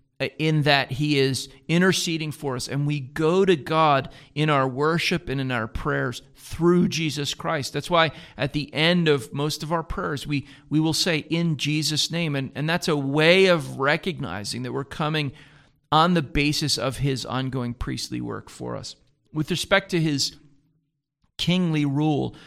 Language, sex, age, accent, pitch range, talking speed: English, male, 40-59, American, 135-155 Hz, 175 wpm